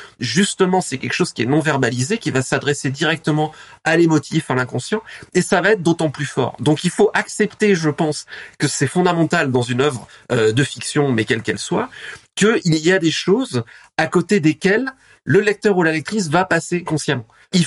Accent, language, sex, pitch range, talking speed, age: French, French, male, 135-195 Hz, 195 wpm, 30-49